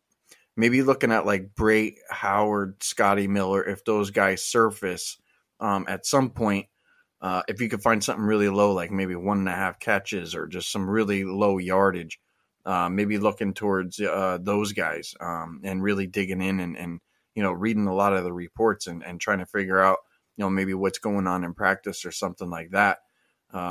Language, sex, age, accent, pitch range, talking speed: English, male, 20-39, American, 95-105 Hz, 195 wpm